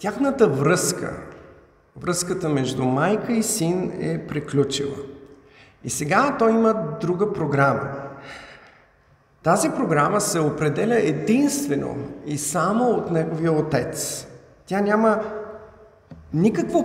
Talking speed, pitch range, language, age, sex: 100 wpm, 140-200 Hz, Bulgarian, 50-69, male